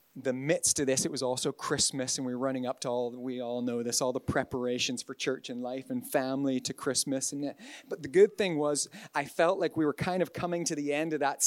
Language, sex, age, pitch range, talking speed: English, male, 30-49, 135-175 Hz, 255 wpm